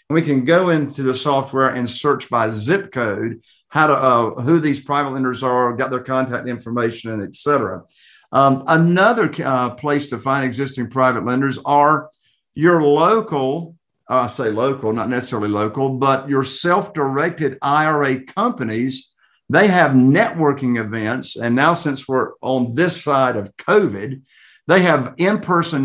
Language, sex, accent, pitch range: English, male, American, 125-160 Hz